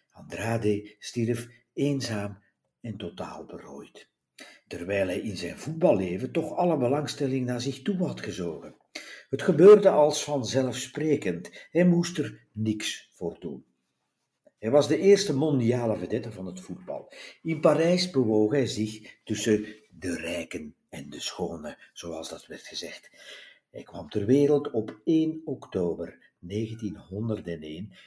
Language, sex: Dutch, male